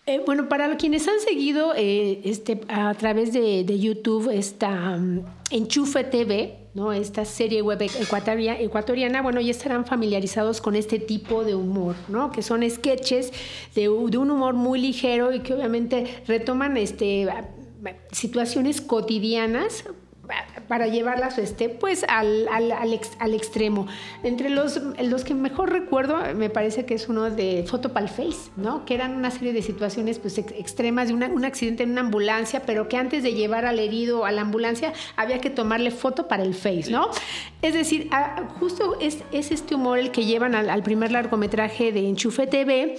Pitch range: 215-265 Hz